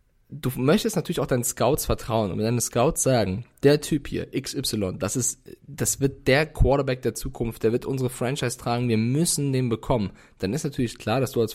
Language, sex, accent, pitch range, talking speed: German, male, German, 115-135 Hz, 205 wpm